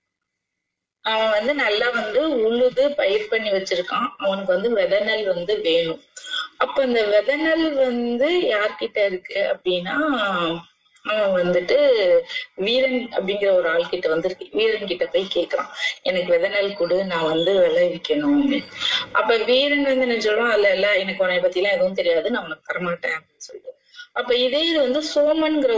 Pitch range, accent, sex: 205-315 Hz, native, female